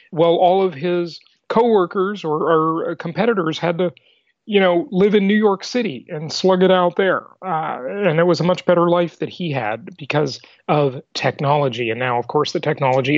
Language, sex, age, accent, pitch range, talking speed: English, male, 40-59, American, 150-195 Hz, 190 wpm